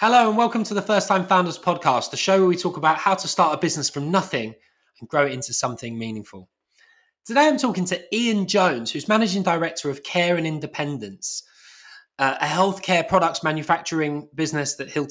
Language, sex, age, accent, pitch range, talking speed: English, male, 20-39, British, 125-165 Hz, 195 wpm